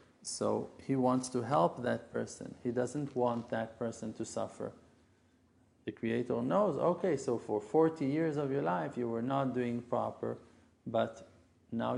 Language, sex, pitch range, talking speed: English, male, 115-135 Hz, 160 wpm